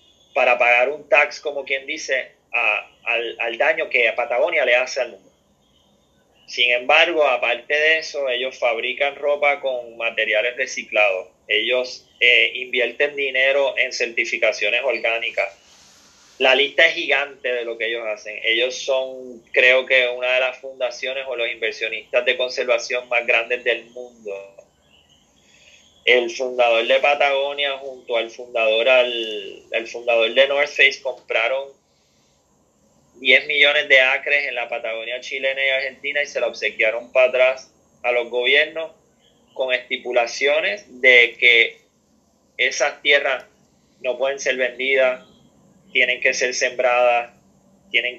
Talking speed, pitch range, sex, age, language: 135 wpm, 120-140 Hz, male, 20-39, Spanish